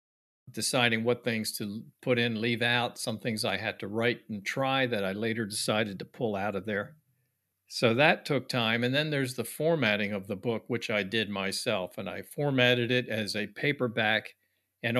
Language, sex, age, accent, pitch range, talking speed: English, male, 50-69, American, 105-125 Hz, 195 wpm